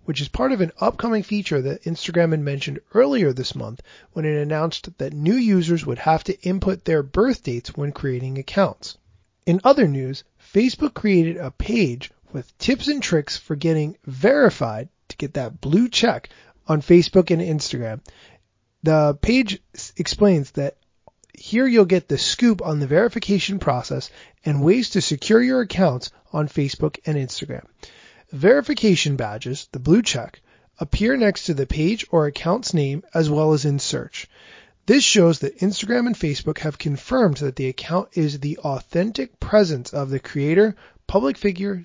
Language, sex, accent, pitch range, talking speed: English, male, American, 140-200 Hz, 165 wpm